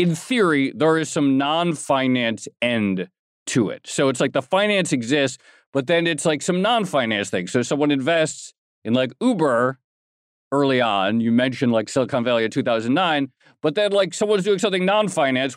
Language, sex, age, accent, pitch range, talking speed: English, male, 40-59, American, 120-170 Hz, 170 wpm